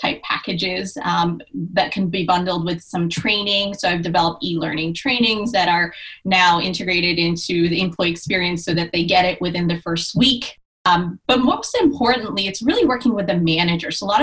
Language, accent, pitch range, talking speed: English, American, 170-220 Hz, 190 wpm